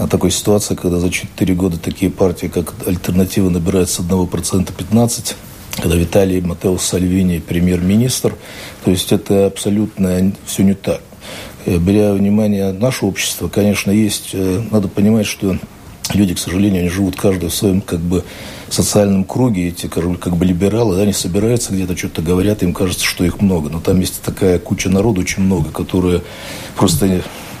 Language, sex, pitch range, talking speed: Russian, male, 90-105 Hz, 160 wpm